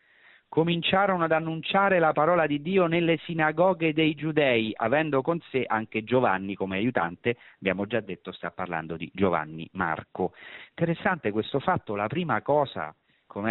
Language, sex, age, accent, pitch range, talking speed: Italian, male, 40-59, native, 95-135 Hz, 145 wpm